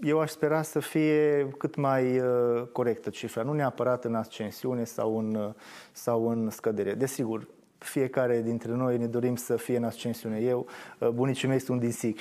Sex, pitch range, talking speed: male, 125-155 Hz, 180 wpm